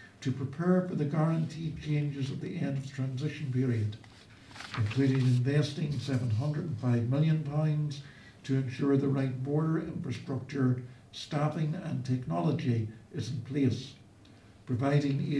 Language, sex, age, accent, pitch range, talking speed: English, male, 60-79, American, 120-150 Hz, 115 wpm